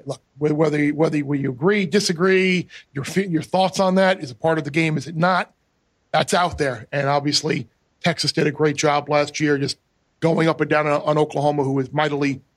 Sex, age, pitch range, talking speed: male, 40-59, 145-175 Hz, 205 wpm